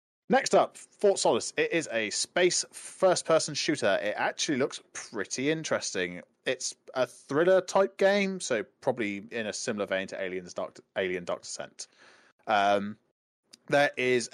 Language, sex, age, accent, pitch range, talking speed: English, male, 20-39, British, 120-165 Hz, 145 wpm